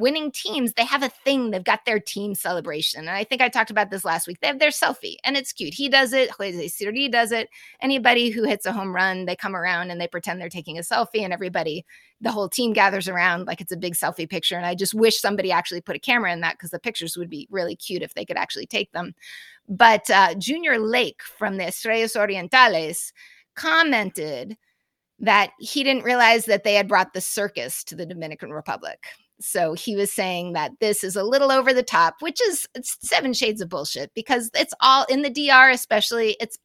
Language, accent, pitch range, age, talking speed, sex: English, American, 180-260 Hz, 20-39, 225 wpm, female